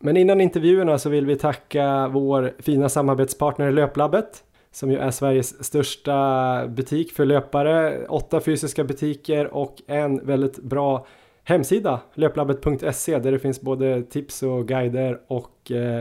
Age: 20-39